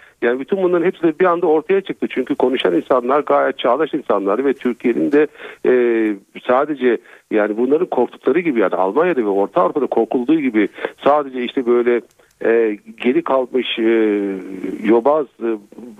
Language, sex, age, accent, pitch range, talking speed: Turkish, male, 50-69, native, 110-160 Hz, 150 wpm